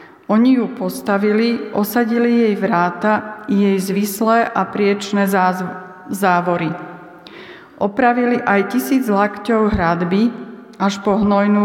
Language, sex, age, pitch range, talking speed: Slovak, female, 40-59, 190-225 Hz, 110 wpm